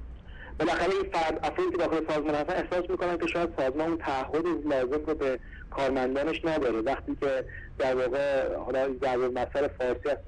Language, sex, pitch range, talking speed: Persian, male, 130-170 Hz, 175 wpm